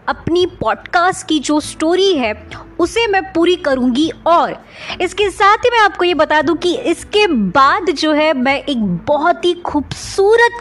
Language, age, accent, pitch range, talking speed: Hindi, 30-49, native, 205-345 Hz, 165 wpm